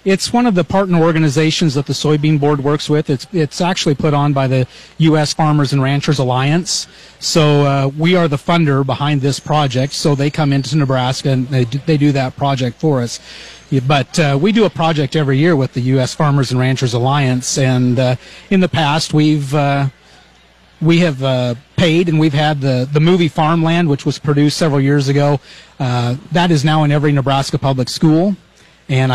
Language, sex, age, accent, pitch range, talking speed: English, male, 40-59, American, 135-160 Hz, 200 wpm